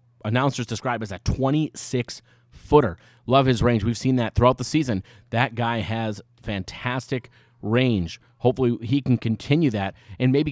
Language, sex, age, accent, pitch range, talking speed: English, male, 30-49, American, 110-130 Hz, 150 wpm